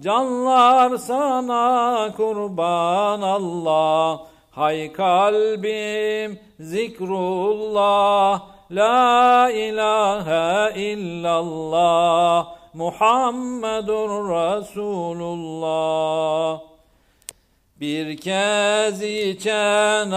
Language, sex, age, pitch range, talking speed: Turkish, male, 50-69, 170-215 Hz, 45 wpm